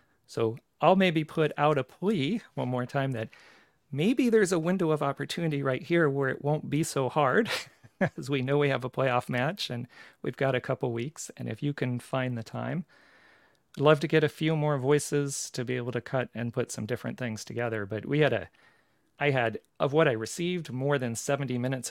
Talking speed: 215 wpm